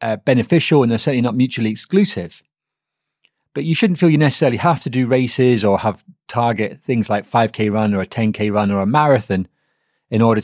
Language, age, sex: English, 30-49, male